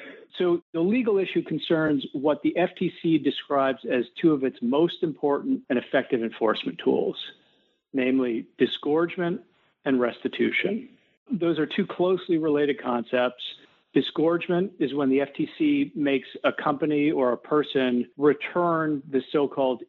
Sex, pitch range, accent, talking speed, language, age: male, 130-170 Hz, American, 130 wpm, English, 50-69